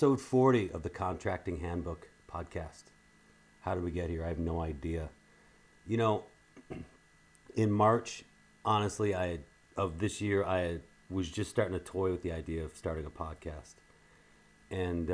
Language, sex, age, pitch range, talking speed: English, male, 40-59, 90-115 Hz, 150 wpm